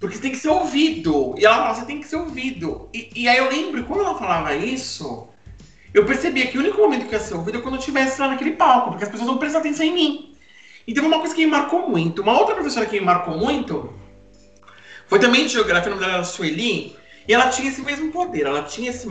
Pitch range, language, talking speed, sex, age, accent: 170-285 Hz, Portuguese, 250 wpm, male, 40-59, Brazilian